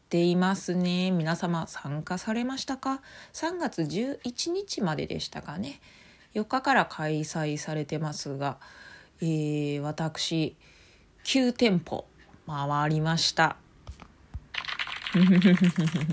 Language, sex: Japanese, female